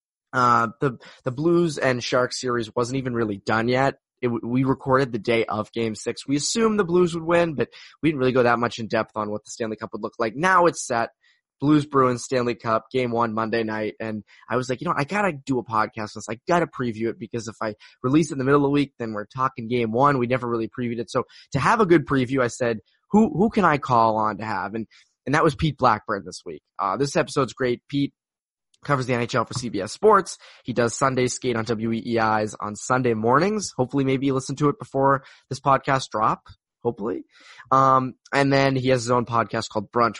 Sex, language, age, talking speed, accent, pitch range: male, English, 20-39, 235 wpm, American, 115-140 Hz